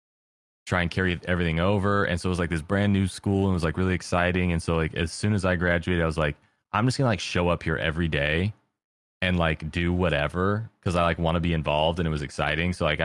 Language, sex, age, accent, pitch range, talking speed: English, male, 20-39, American, 75-90 Hz, 260 wpm